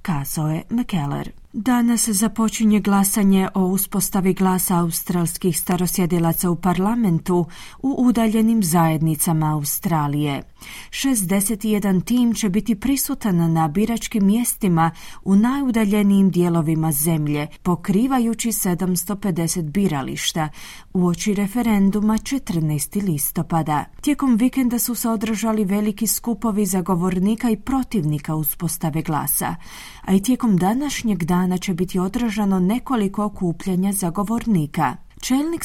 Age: 30-49